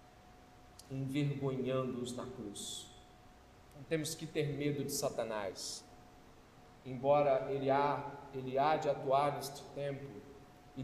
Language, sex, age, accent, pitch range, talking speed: Portuguese, male, 40-59, Brazilian, 145-225 Hz, 110 wpm